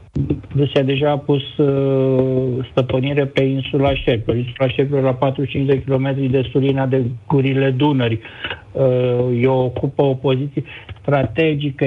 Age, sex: 50-69, male